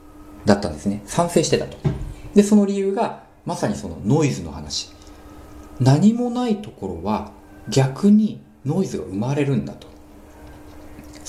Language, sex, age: Japanese, male, 40-59